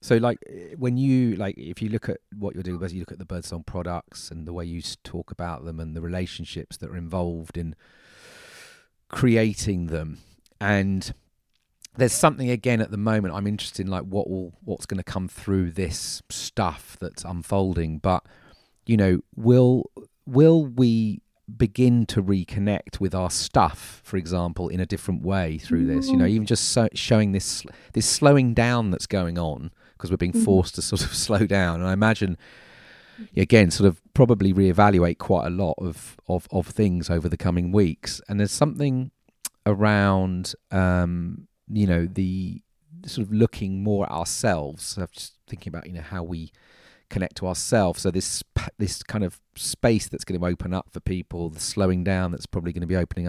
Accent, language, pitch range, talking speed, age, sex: British, English, 90-110 Hz, 185 wpm, 30-49, male